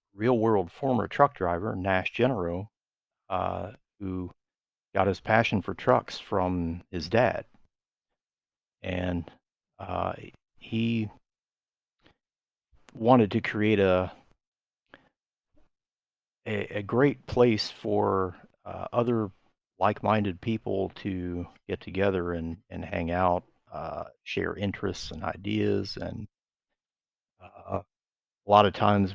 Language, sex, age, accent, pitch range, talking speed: English, male, 40-59, American, 95-110 Hz, 105 wpm